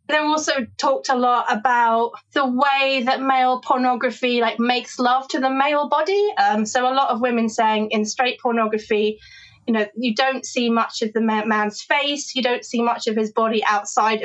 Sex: female